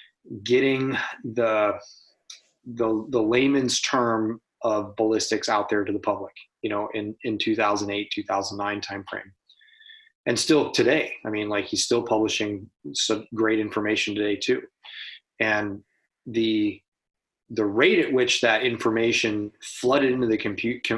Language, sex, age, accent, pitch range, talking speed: English, male, 30-49, American, 105-130 Hz, 130 wpm